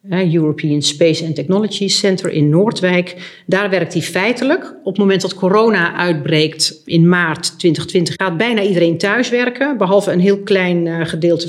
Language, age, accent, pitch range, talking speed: Dutch, 40-59, Dutch, 155-190 Hz, 155 wpm